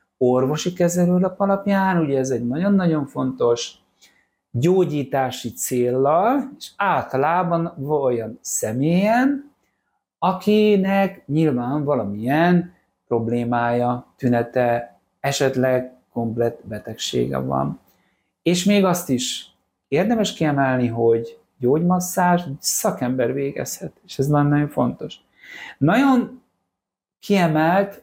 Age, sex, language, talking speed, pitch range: 60-79, male, Hungarian, 85 wpm, 120-175 Hz